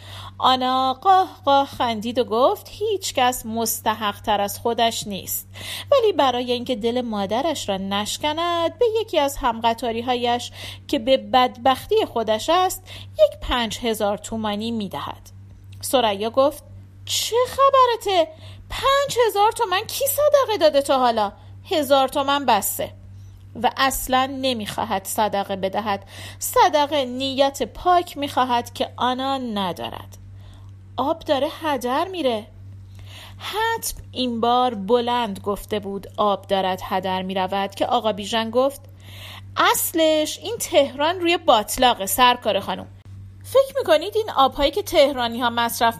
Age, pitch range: 40-59, 195-295 Hz